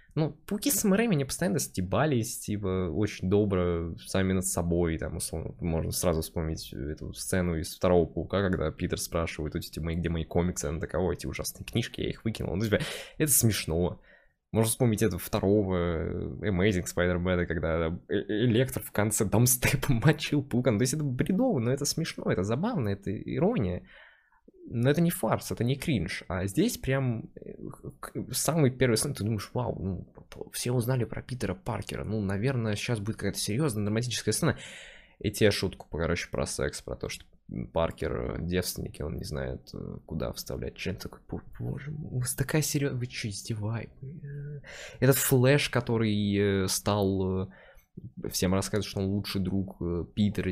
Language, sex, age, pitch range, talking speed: Russian, male, 20-39, 90-125 Hz, 160 wpm